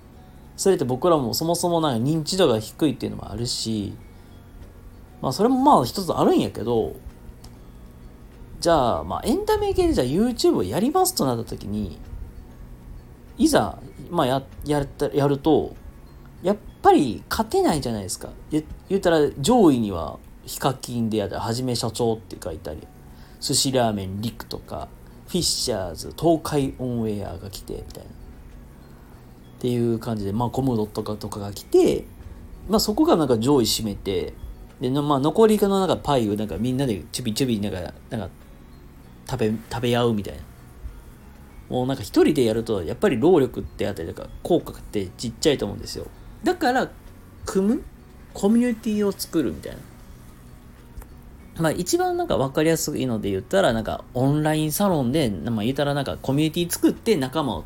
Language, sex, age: Japanese, male, 40-59